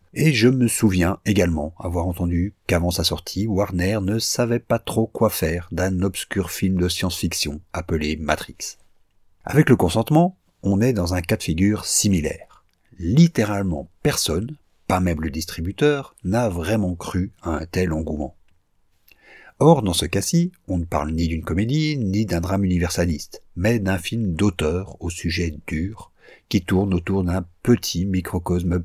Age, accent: 50-69, French